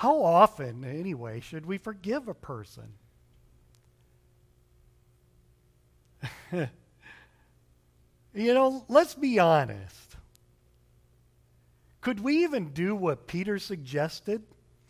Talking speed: 80 wpm